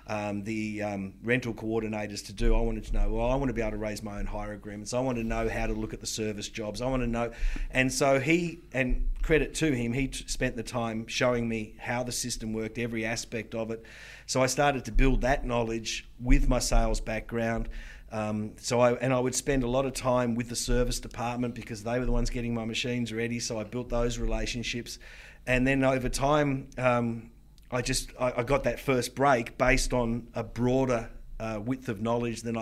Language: English